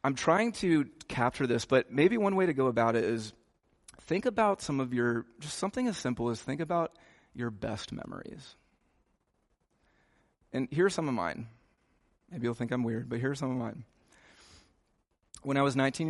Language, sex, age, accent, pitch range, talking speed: English, male, 30-49, American, 115-150 Hz, 180 wpm